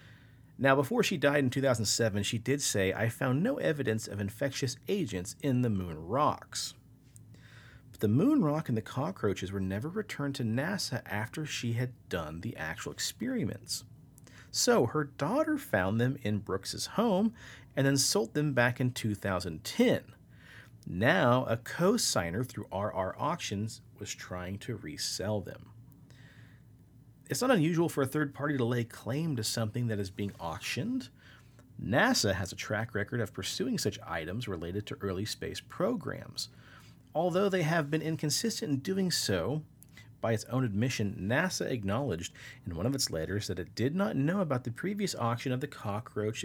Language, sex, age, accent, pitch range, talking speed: English, male, 40-59, American, 105-140 Hz, 165 wpm